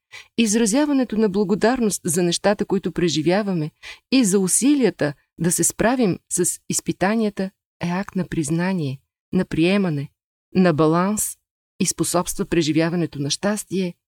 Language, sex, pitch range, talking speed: Bulgarian, female, 160-205 Hz, 120 wpm